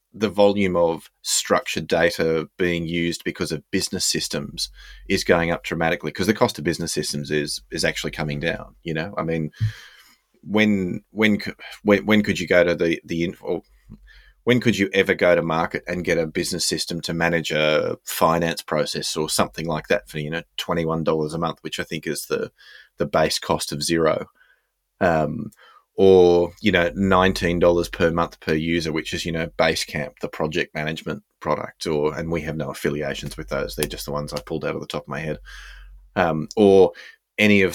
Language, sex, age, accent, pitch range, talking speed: English, male, 30-49, Australian, 80-100 Hz, 195 wpm